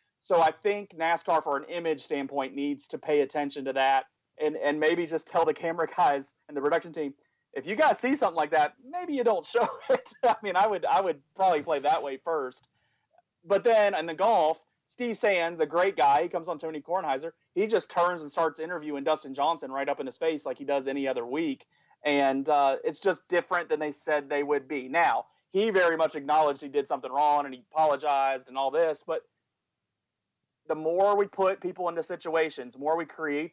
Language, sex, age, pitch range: English, male, 30-49, 140-170 Hz